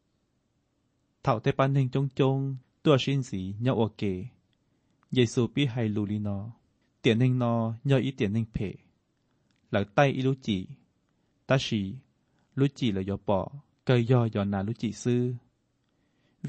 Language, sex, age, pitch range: Thai, male, 20-39, 105-130 Hz